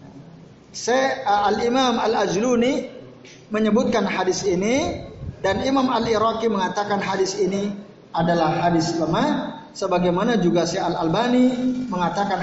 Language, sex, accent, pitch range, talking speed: Indonesian, male, native, 180-240 Hz, 90 wpm